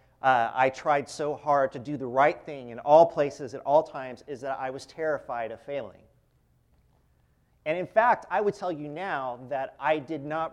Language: English